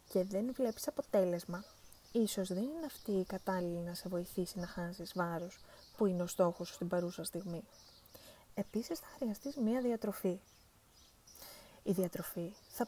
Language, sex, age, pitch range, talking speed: Greek, female, 20-39, 180-225 Hz, 150 wpm